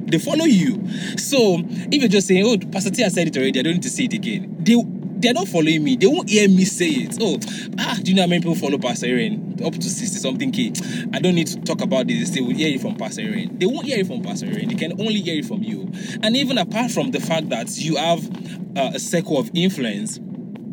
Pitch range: 175-220 Hz